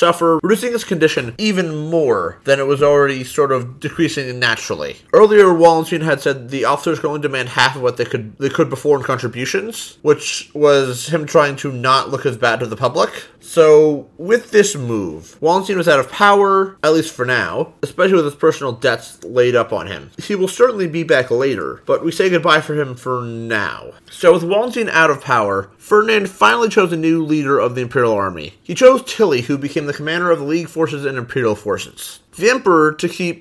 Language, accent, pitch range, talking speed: English, American, 130-175 Hz, 205 wpm